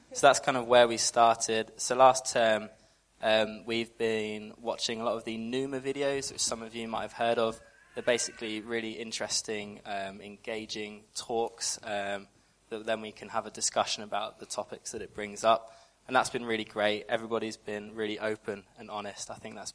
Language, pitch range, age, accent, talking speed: English, 105-115 Hz, 20-39, British, 195 wpm